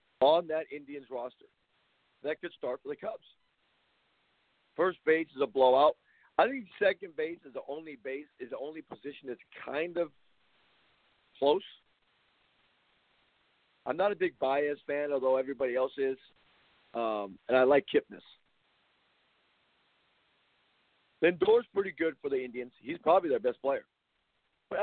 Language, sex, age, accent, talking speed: English, male, 50-69, American, 140 wpm